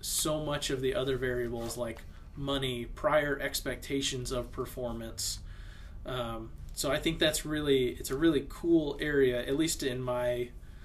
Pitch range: 115-145 Hz